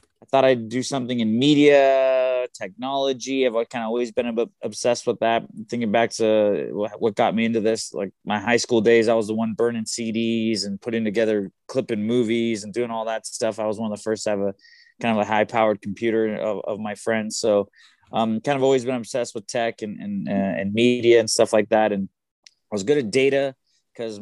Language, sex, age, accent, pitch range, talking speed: English, male, 20-39, American, 110-130 Hz, 225 wpm